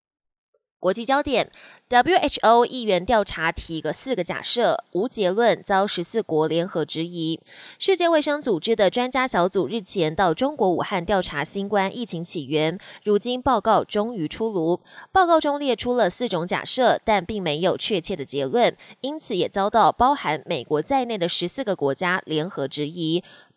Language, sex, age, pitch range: Chinese, female, 20-39, 175-250 Hz